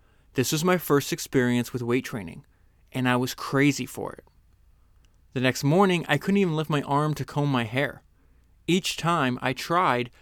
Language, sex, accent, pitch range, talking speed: English, male, American, 120-155 Hz, 180 wpm